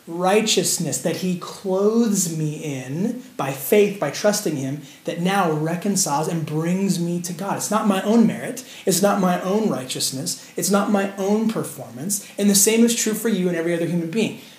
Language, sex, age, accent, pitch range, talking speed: English, male, 30-49, American, 165-210 Hz, 190 wpm